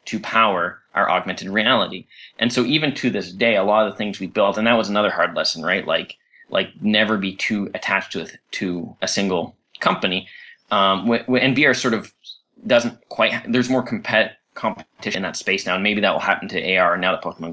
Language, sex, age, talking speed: English, male, 20-39, 210 wpm